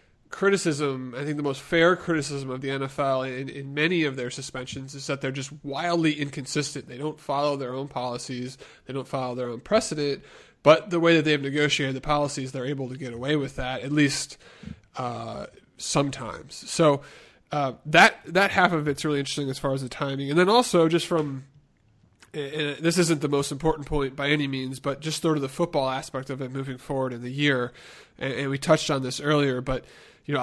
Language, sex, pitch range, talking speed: English, male, 130-150 Hz, 205 wpm